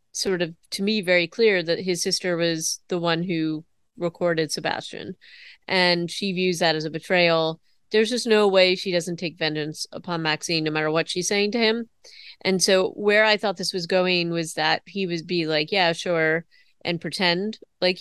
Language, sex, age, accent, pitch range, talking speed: English, female, 30-49, American, 160-185 Hz, 195 wpm